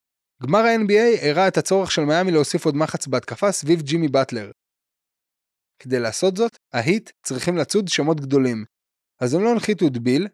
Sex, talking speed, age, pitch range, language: male, 155 wpm, 20-39, 130-190 Hz, Hebrew